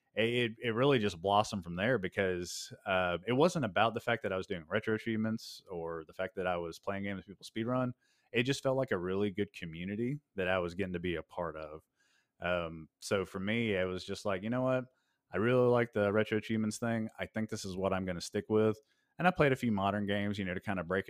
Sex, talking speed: male, 255 wpm